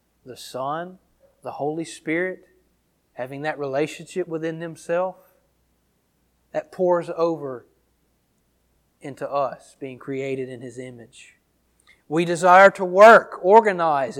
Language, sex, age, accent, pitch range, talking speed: English, male, 40-59, American, 140-215 Hz, 105 wpm